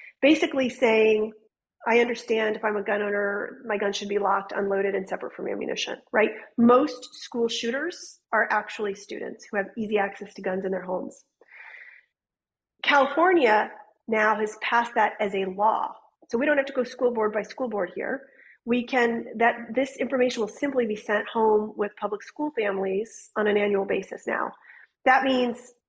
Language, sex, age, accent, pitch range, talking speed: English, female, 40-59, American, 205-245 Hz, 175 wpm